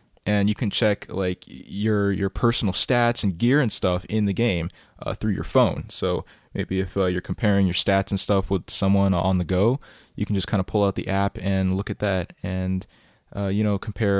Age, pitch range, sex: 20-39, 95-110 Hz, male